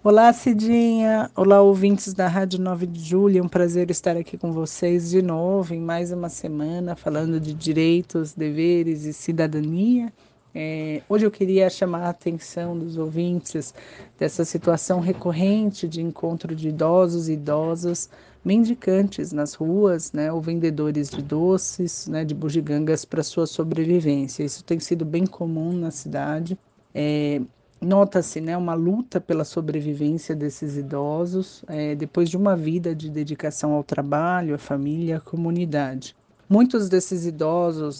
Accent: Brazilian